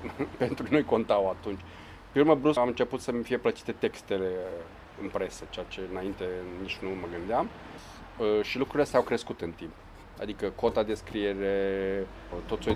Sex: male